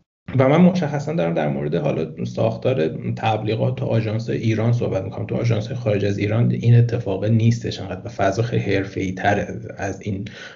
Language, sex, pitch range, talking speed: Persian, male, 100-130 Hz, 160 wpm